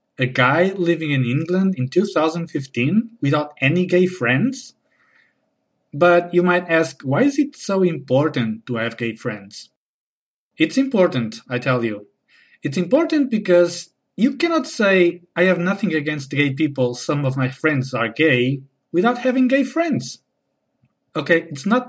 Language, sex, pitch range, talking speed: English, male, 125-180 Hz, 150 wpm